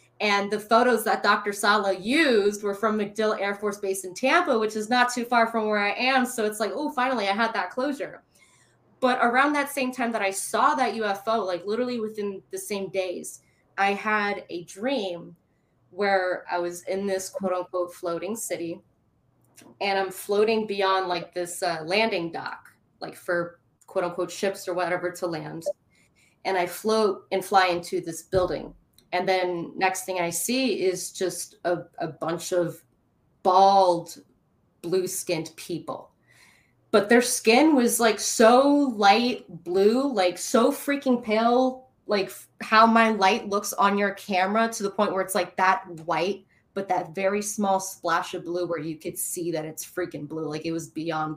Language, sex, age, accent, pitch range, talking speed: English, female, 20-39, American, 180-220 Hz, 175 wpm